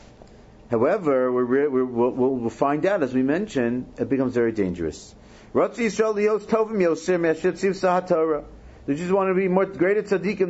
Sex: male